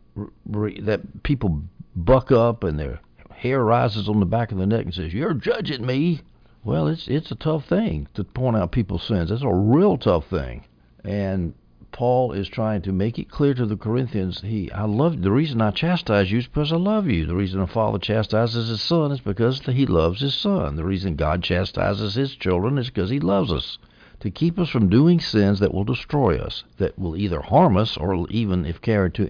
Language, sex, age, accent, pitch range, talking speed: English, male, 60-79, American, 95-125 Hz, 210 wpm